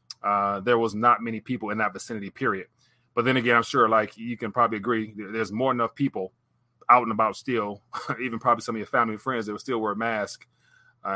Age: 30-49